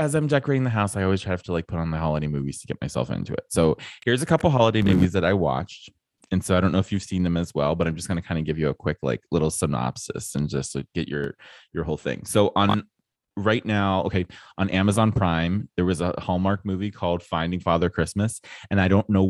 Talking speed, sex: 255 wpm, male